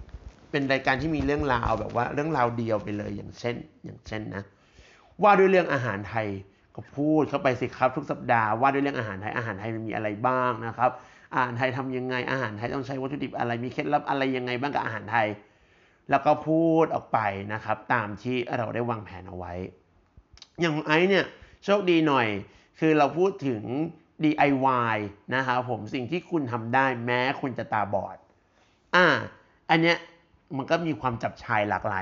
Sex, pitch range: male, 105-140 Hz